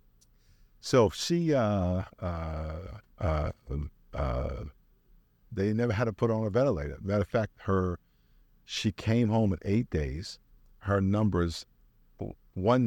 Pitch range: 80-105 Hz